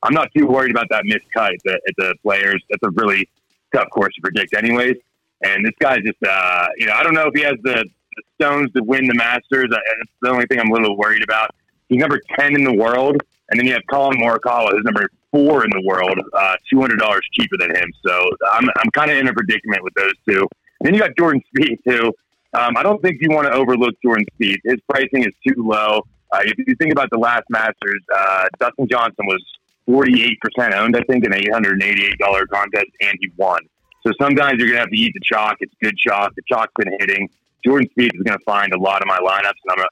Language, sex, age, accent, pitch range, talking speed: English, male, 30-49, American, 105-130 Hz, 240 wpm